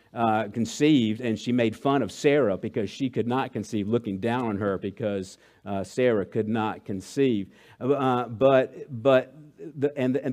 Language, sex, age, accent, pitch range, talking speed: English, male, 50-69, American, 120-150 Hz, 165 wpm